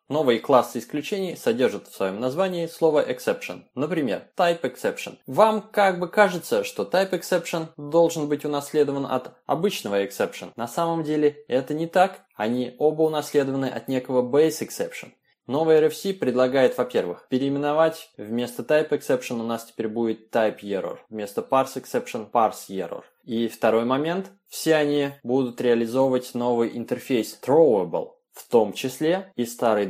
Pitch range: 120-165 Hz